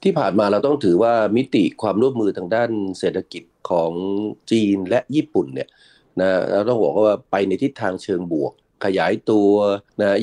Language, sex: Thai, male